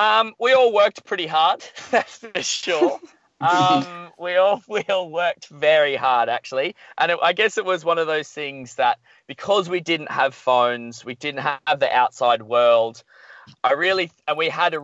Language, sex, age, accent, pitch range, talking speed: English, male, 20-39, Australian, 120-175 Hz, 185 wpm